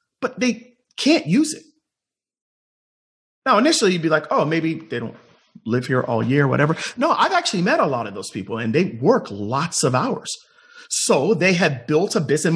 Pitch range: 165-255 Hz